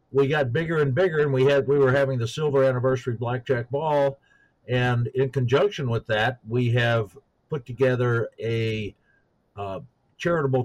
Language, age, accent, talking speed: English, 50-69, American, 160 wpm